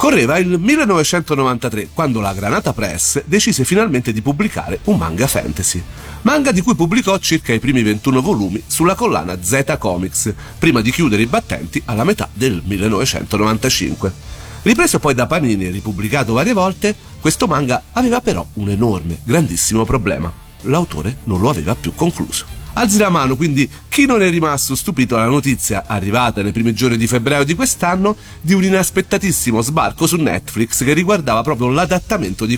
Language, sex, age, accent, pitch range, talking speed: Italian, male, 40-59, native, 110-170 Hz, 160 wpm